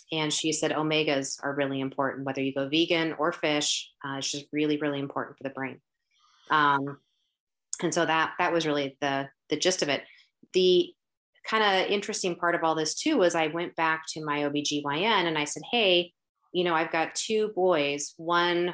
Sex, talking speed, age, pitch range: female, 195 wpm, 30-49, 145-185 Hz